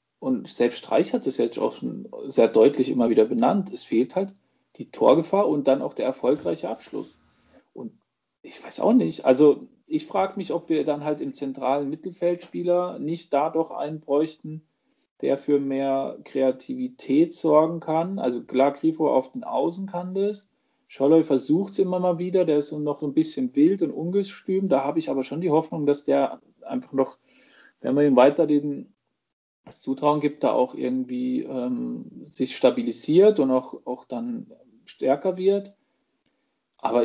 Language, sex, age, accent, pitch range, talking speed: German, male, 40-59, German, 140-190 Hz, 170 wpm